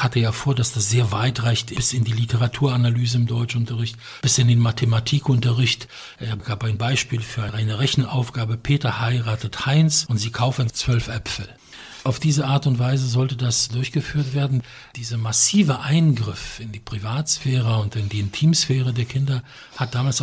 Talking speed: 165 wpm